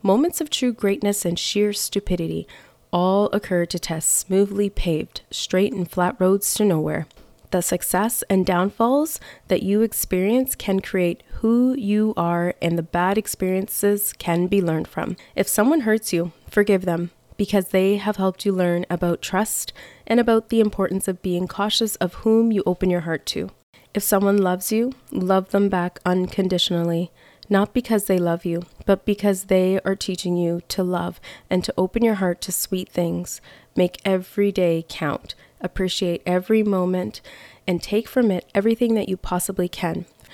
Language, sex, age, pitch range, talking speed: English, female, 20-39, 175-205 Hz, 165 wpm